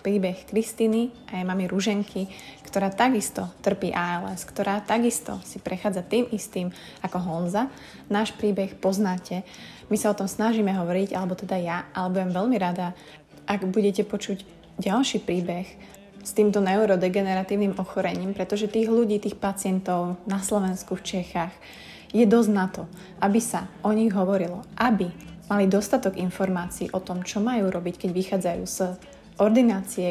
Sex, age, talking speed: female, 20-39, 145 wpm